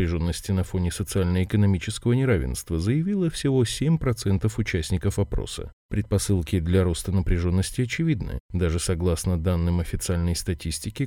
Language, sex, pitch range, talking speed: Russian, male, 85-110 Hz, 105 wpm